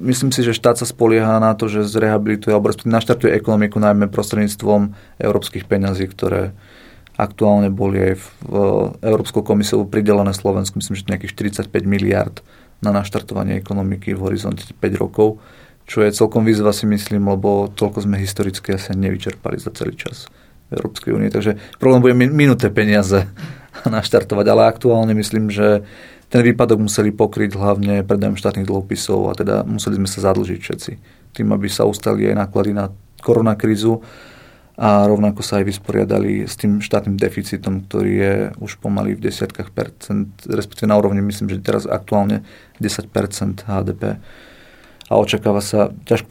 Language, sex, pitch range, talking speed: Slovak, male, 100-110 Hz, 150 wpm